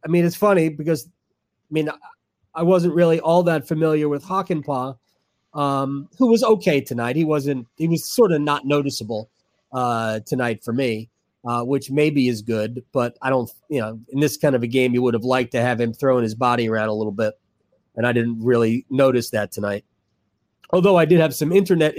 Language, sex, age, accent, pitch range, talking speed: English, male, 30-49, American, 120-155 Hz, 205 wpm